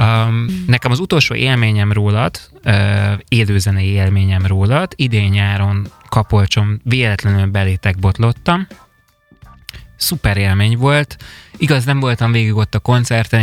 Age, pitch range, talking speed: 20-39, 105-125 Hz, 105 wpm